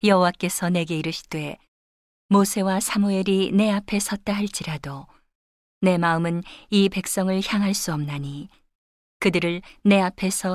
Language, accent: Korean, native